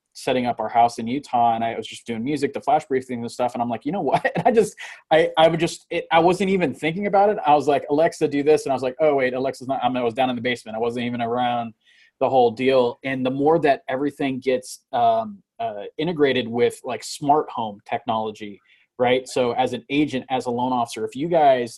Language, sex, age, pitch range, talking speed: English, male, 20-39, 120-145 Hz, 255 wpm